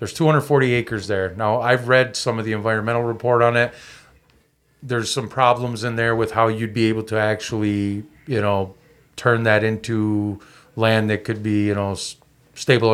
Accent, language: American, English